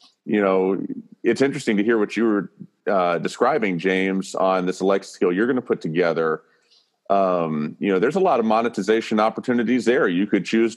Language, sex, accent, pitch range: English, male, American, 90-110 Hz